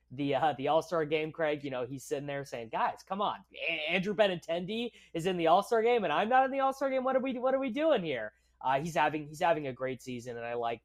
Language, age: English, 20-39